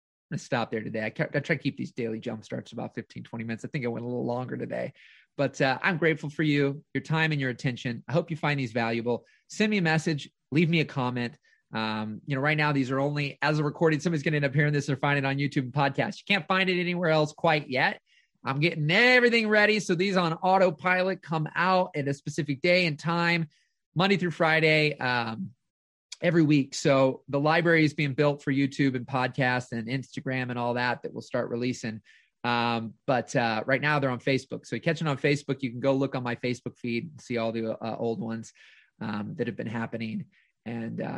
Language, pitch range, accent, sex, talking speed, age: English, 120-150 Hz, American, male, 230 wpm, 30-49